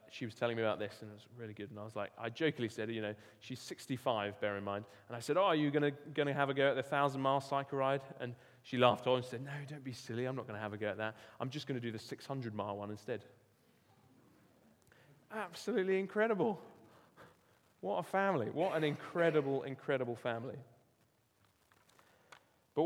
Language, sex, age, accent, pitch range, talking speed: English, male, 30-49, British, 115-145 Hz, 215 wpm